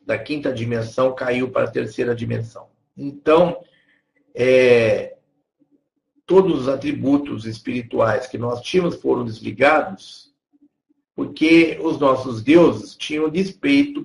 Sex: male